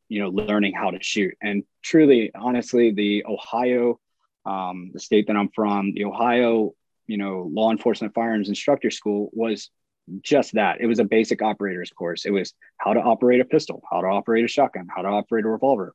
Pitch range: 100-115 Hz